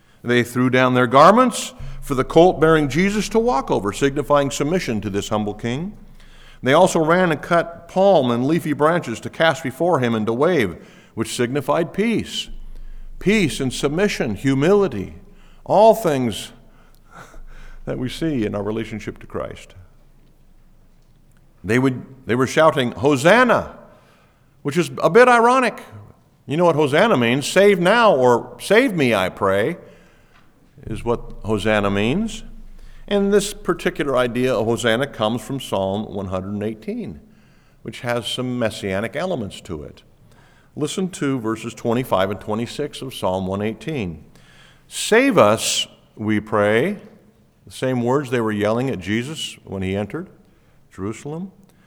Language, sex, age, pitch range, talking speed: English, male, 50-69, 115-175 Hz, 140 wpm